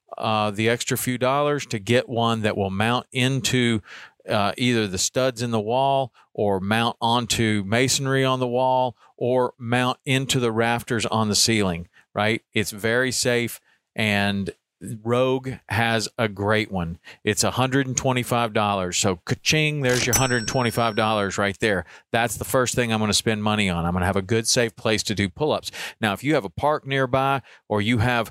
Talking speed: 180 wpm